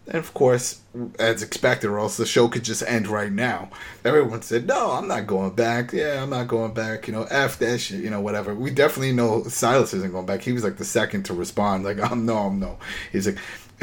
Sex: male